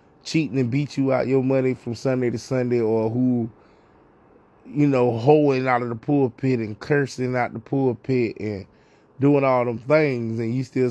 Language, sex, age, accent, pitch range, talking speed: English, male, 20-39, American, 125-145 Hz, 180 wpm